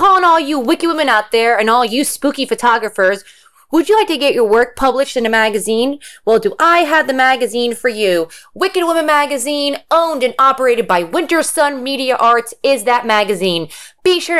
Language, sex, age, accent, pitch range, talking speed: English, female, 20-39, American, 230-350 Hz, 195 wpm